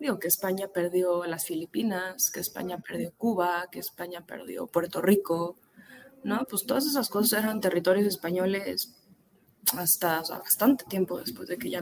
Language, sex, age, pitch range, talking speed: Spanish, female, 20-39, 175-205 Hz, 160 wpm